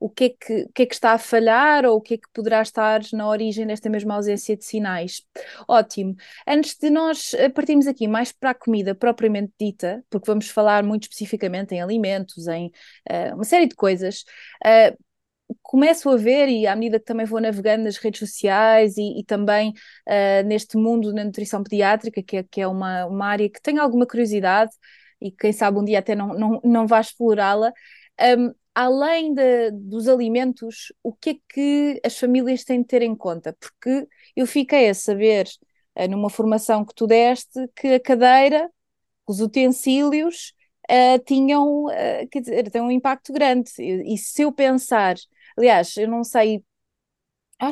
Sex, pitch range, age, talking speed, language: female, 210-270 Hz, 20-39, 170 wpm, Portuguese